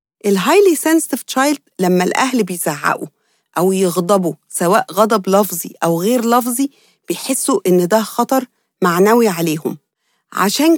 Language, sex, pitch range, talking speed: English, female, 190-255 Hz, 115 wpm